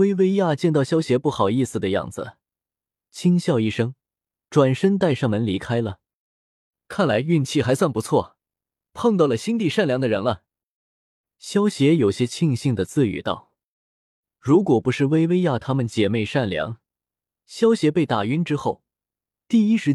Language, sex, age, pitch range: Chinese, male, 20-39, 115-170 Hz